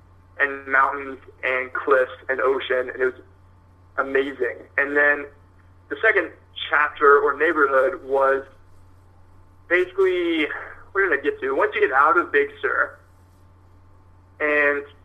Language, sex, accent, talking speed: English, male, American, 130 wpm